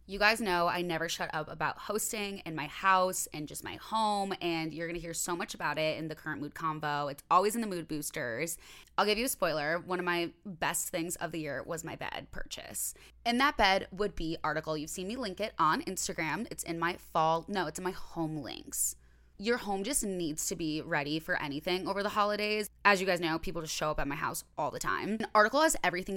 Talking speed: 240 wpm